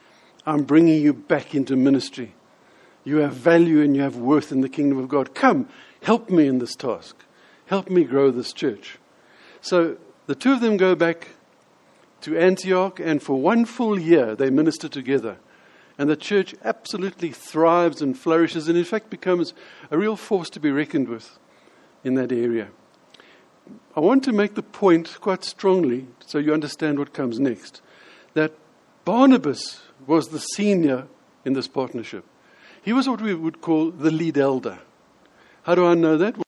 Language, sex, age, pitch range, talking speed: English, male, 60-79, 140-190 Hz, 170 wpm